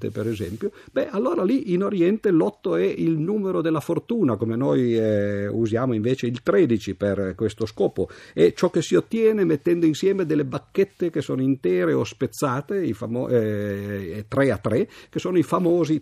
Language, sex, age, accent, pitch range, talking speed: Italian, male, 50-69, native, 100-150 Hz, 175 wpm